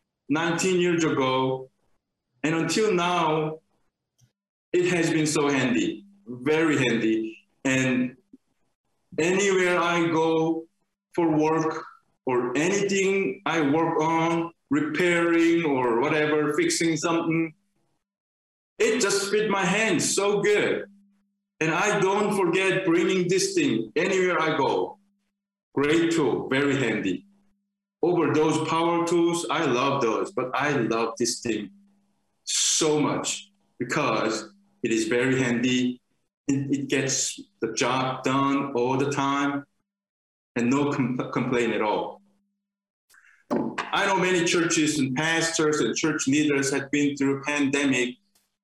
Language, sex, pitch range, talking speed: English, male, 140-195 Hz, 120 wpm